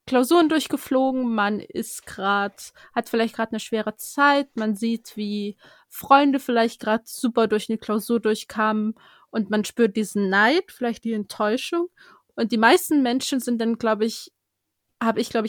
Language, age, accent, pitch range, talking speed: German, 20-39, German, 215-260 Hz, 160 wpm